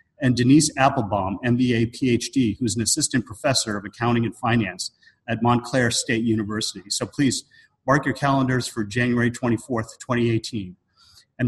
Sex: male